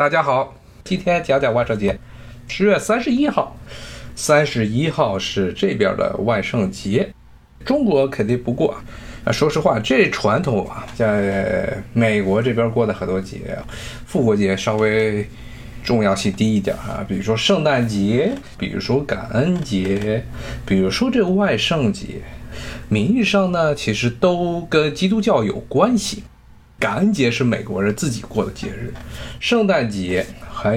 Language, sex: Chinese, male